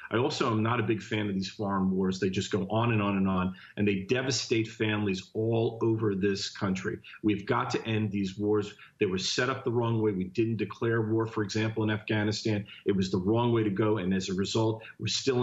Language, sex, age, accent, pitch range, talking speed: English, male, 40-59, American, 100-115 Hz, 240 wpm